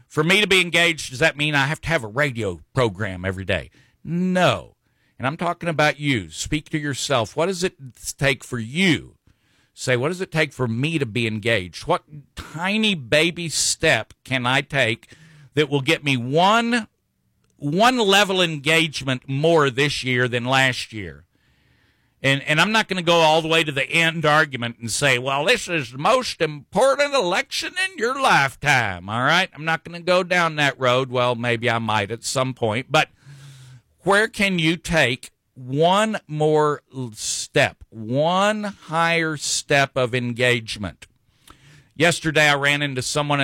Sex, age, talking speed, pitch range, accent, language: male, 50-69, 170 wpm, 125-165 Hz, American, English